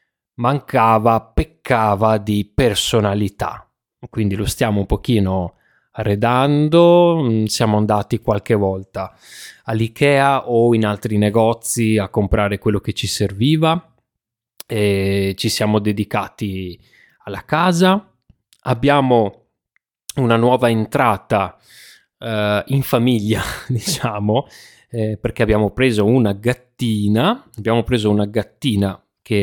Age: 20-39